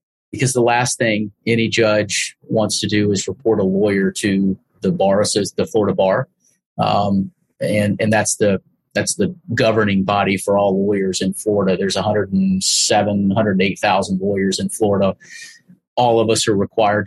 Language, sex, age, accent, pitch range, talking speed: English, male, 30-49, American, 100-110 Hz, 180 wpm